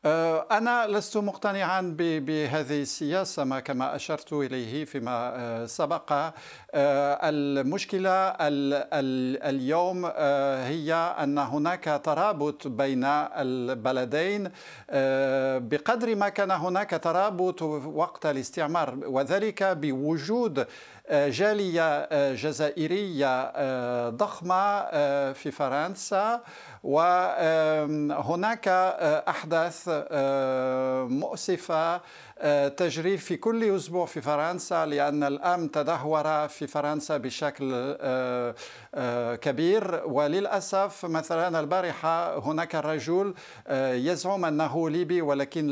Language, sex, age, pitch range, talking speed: Arabic, male, 50-69, 140-180 Hz, 75 wpm